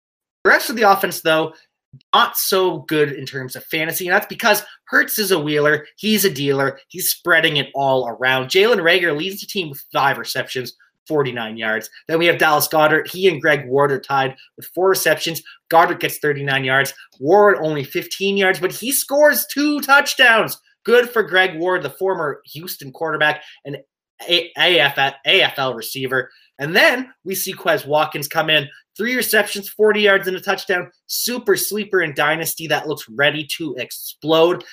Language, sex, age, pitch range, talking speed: English, male, 20-39, 150-200 Hz, 175 wpm